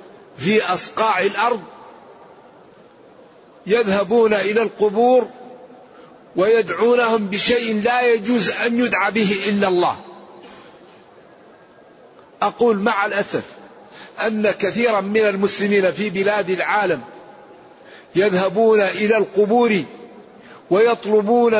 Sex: male